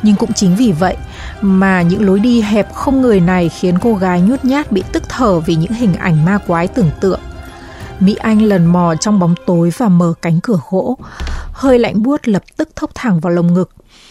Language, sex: Vietnamese, female